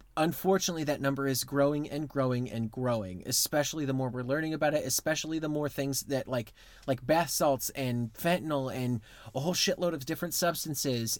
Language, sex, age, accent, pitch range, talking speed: English, male, 30-49, American, 125-150 Hz, 180 wpm